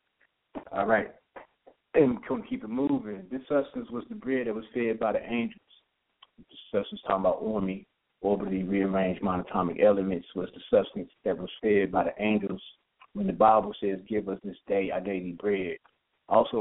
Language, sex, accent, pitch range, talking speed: English, male, American, 95-115 Hz, 185 wpm